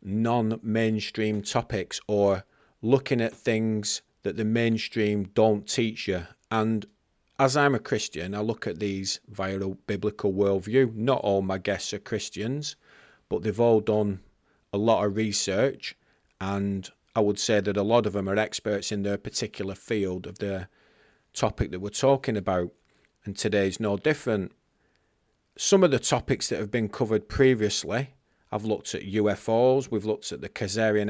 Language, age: English, 40-59